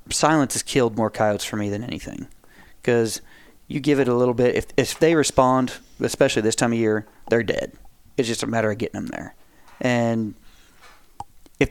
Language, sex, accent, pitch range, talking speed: English, male, American, 105-125 Hz, 190 wpm